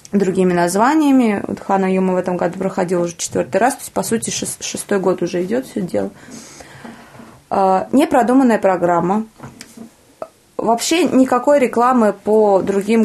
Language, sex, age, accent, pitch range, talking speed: Russian, female, 20-39, native, 185-230 Hz, 140 wpm